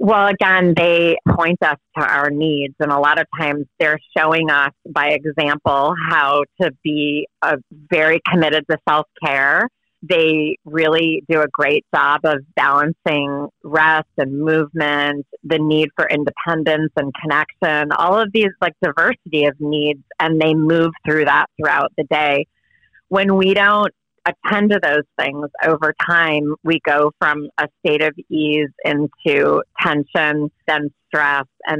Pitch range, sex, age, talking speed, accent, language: 145-165 Hz, female, 30-49, 150 wpm, American, English